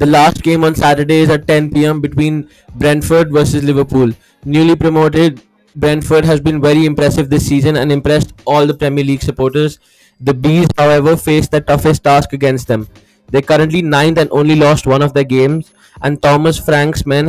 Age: 20-39